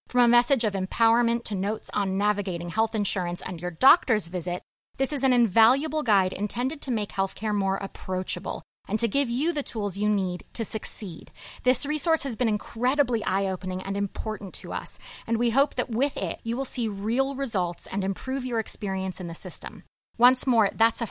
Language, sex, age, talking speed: English, female, 30-49, 195 wpm